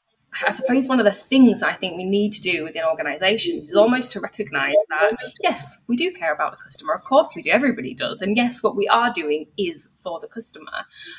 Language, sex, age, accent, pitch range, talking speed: English, female, 20-39, British, 195-245 Hz, 225 wpm